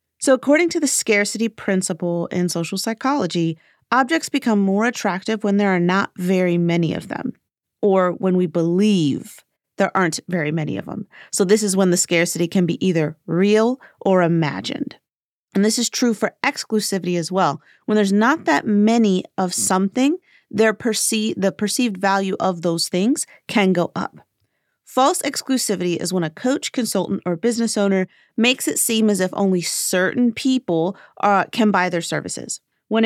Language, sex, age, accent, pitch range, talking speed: English, female, 40-59, American, 180-235 Hz, 170 wpm